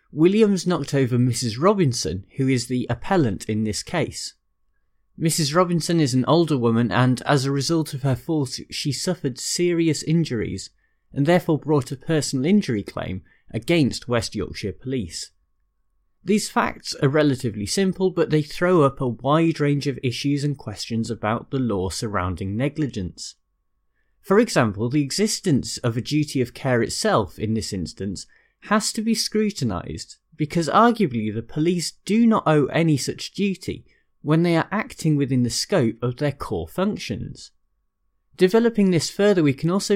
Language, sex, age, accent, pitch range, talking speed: English, male, 30-49, British, 120-170 Hz, 160 wpm